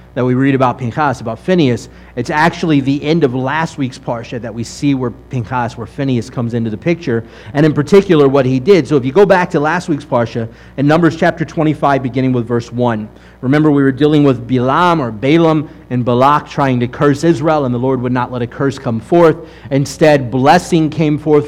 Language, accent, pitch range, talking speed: English, American, 130-165 Hz, 215 wpm